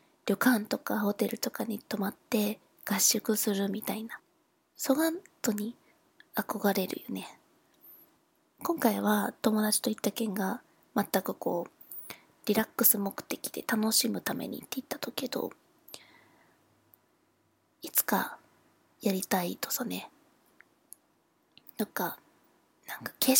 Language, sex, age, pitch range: Japanese, female, 20-39, 215-320 Hz